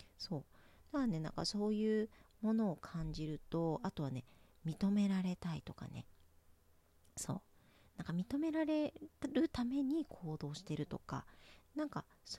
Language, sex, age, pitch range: Japanese, female, 40-59, 140-220 Hz